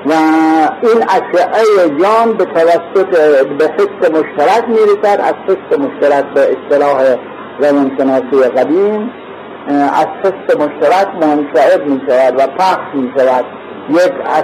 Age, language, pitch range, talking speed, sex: 50-69, Persian, 155-225 Hz, 110 wpm, male